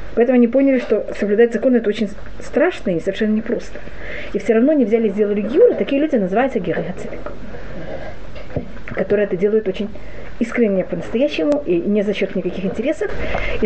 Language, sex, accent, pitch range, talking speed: Russian, female, native, 200-245 Hz, 165 wpm